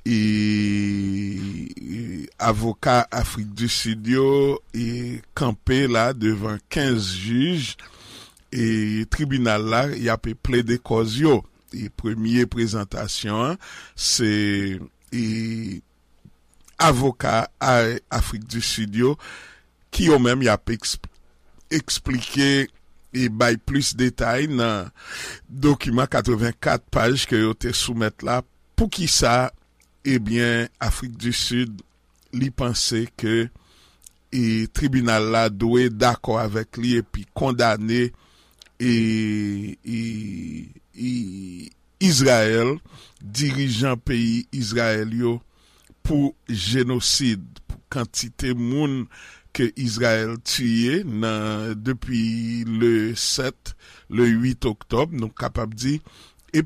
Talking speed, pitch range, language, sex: 100 wpm, 110-125 Hz, English, male